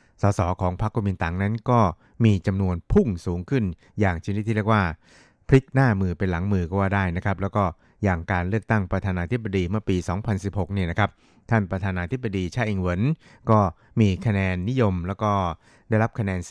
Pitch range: 95-110 Hz